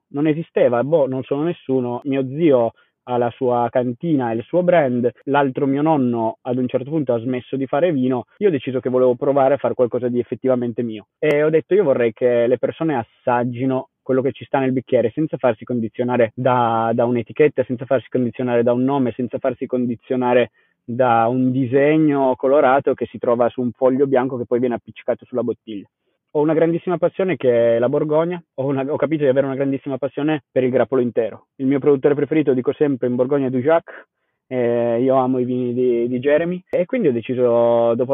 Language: Italian